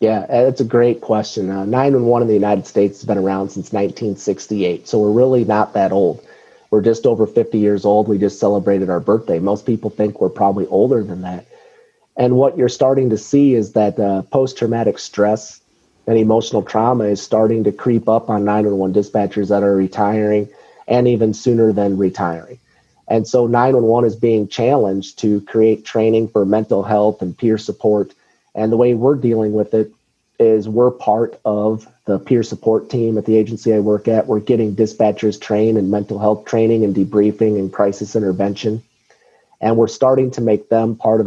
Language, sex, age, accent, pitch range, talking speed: English, male, 40-59, American, 105-115 Hz, 190 wpm